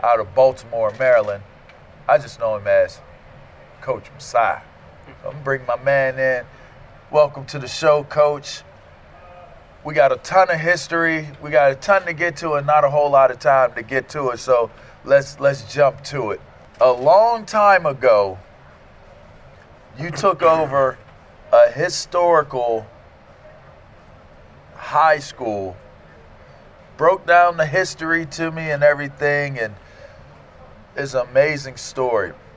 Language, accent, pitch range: English, American, 115-155 Hz